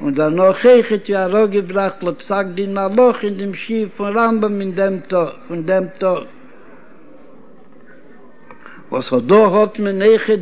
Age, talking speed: 60-79, 110 wpm